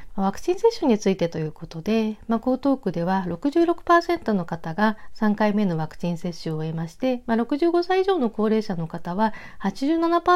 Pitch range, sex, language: 175-275 Hz, female, Japanese